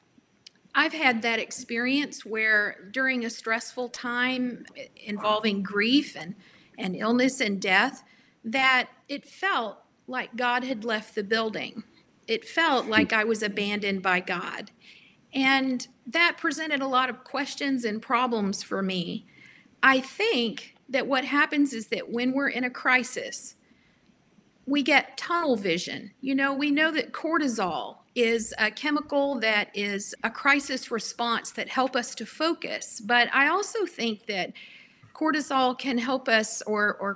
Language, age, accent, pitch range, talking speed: English, 50-69, American, 215-270 Hz, 145 wpm